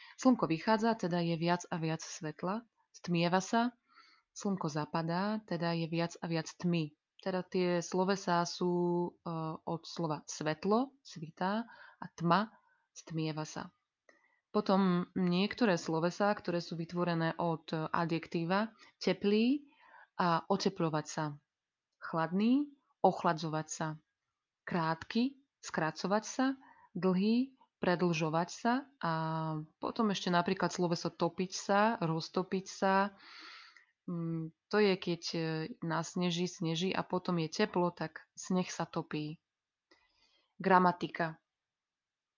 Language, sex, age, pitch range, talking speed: Slovak, female, 20-39, 165-210 Hz, 110 wpm